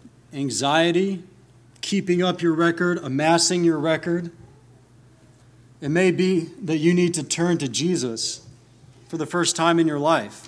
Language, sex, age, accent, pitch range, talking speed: English, male, 40-59, American, 125-170 Hz, 145 wpm